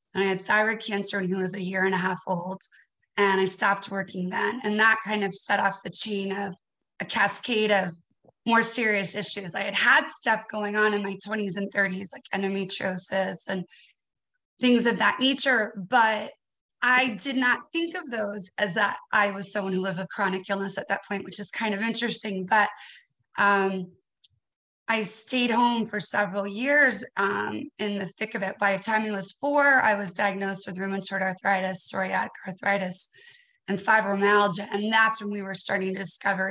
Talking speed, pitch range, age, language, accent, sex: 190 wpm, 195-230 Hz, 20-39, English, American, female